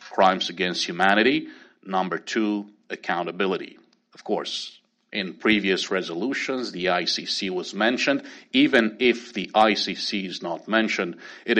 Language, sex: English, male